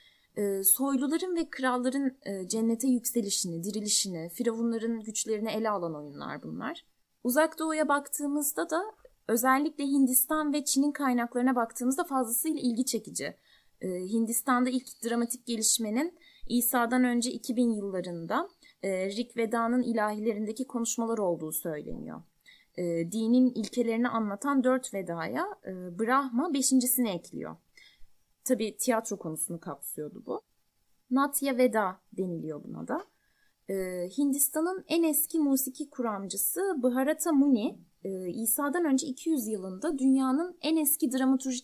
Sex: female